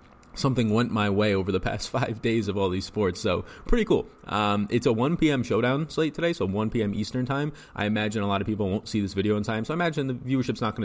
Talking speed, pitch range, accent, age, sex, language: 265 wpm, 95-115 Hz, American, 20-39, male, English